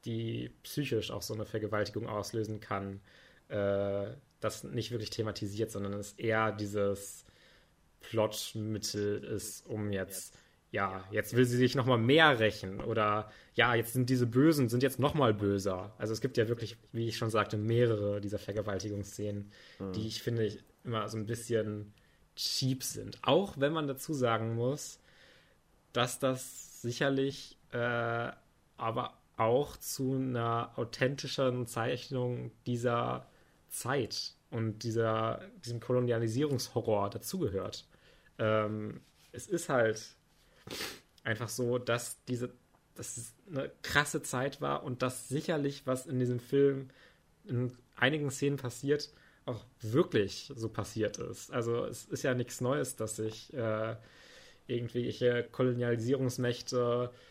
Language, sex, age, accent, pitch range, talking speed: German, male, 20-39, German, 105-125 Hz, 130 wpm